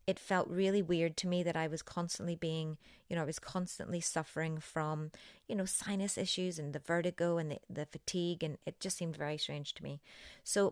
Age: 30-49